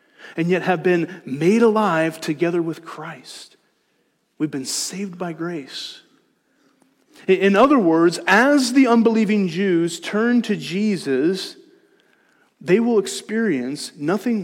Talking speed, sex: 115 wpm, male